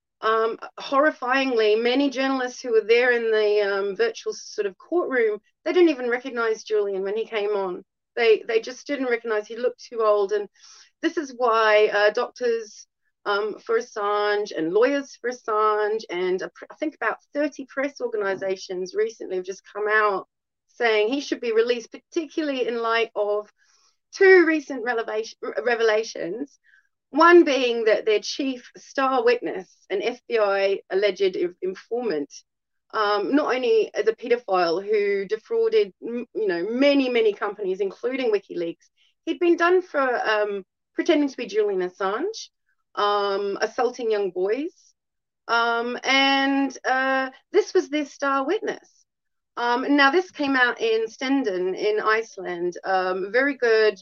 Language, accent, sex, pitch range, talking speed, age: English, Australian, female, 215-335 Hz, 145 wpm, 30-49